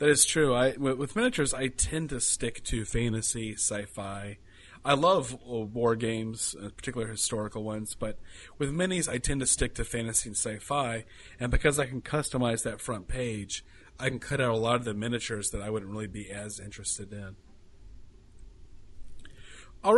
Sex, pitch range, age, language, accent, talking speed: male, 105-135 Hz, 30-49, English, American, 175 wpm